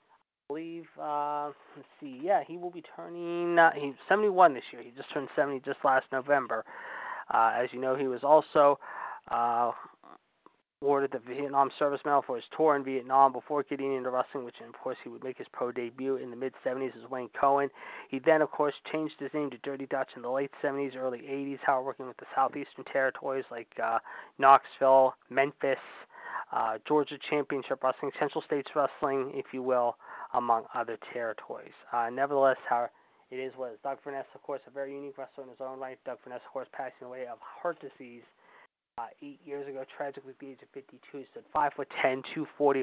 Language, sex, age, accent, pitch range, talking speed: English, male, 20-39, American, 130-145 Hz, 200 wpm